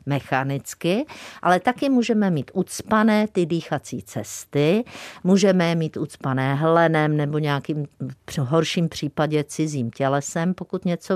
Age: 50-69